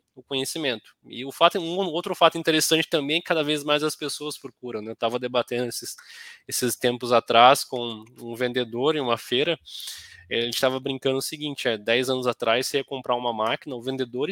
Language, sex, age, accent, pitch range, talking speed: Portuguese, male, 20-39, Brazilian, 125-155 Hz, 210 wpm